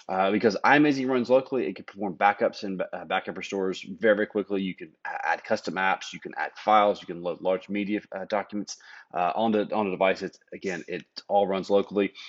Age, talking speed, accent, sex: 30-49, 215 wpm, American, male